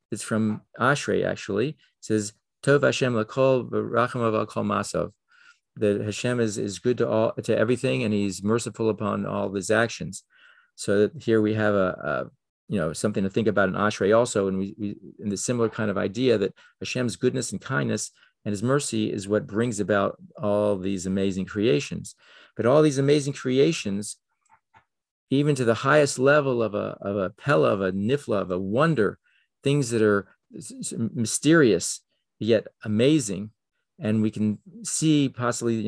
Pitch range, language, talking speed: 105-130 Hz, English, 165 wpm